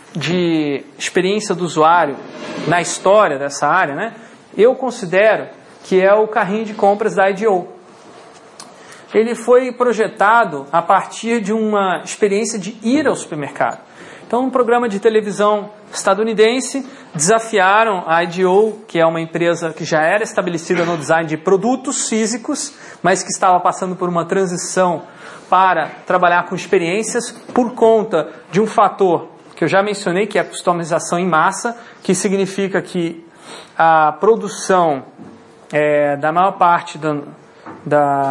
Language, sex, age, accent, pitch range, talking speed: Portuguese, male, 40-59, Brazilian, 170-220 Hz, 140 wpm